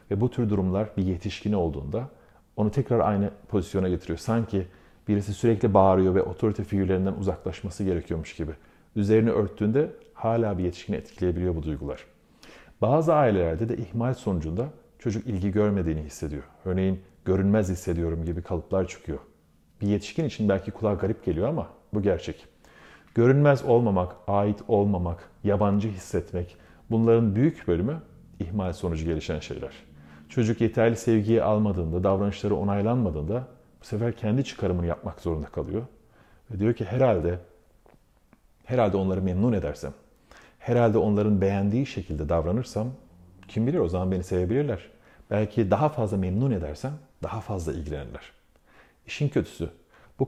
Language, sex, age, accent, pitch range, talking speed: Turkish, male, 40-59, native, 90-110 Hz, 130 wpm